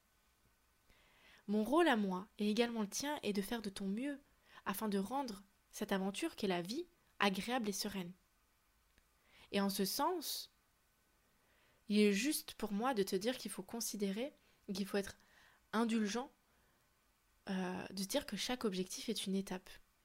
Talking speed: 160 wpm